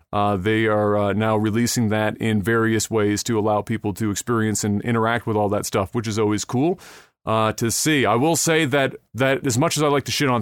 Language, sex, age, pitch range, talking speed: English, male, 30-49, 115-135 Hz, 235 wpm